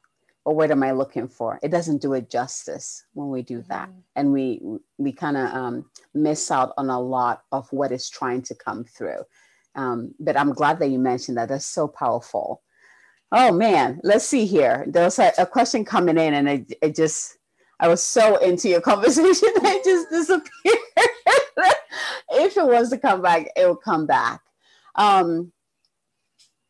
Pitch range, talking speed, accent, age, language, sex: 140-220 Hz, 180 wpm, American, 30-49, English, female